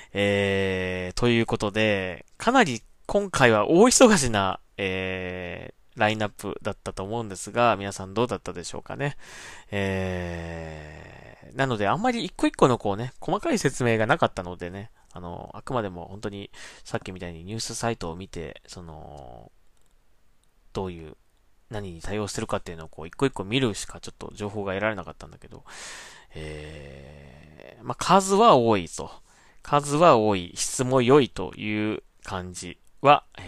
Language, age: Japanese, 20-39